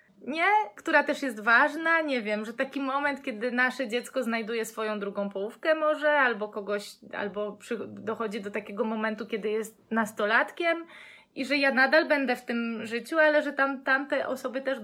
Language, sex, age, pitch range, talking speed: Polish, female, 20-39, 210-270 Hz, 180 wpm